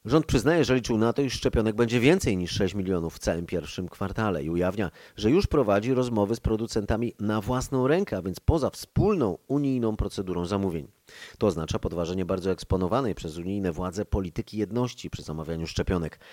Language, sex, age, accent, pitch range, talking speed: Polish, male, 30-49, native, 95-115 Hz, 175 wpm